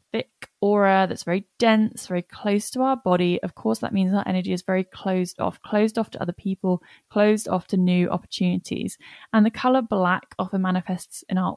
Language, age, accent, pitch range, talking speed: English, 10-29, British, 180-220 Hz, 190 wpm